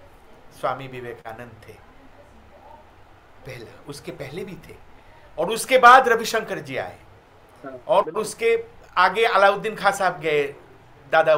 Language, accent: Hindi, native